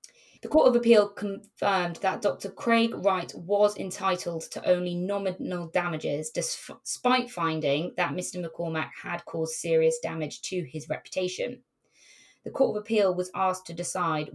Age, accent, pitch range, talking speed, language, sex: 20-39, British, 160-195 Hz, 145 wpm, English, female